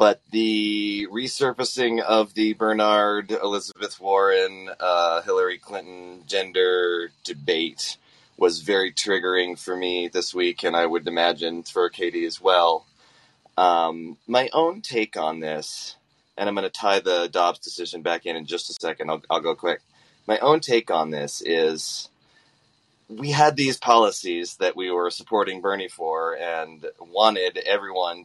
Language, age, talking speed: English, 30-49, 150 wpm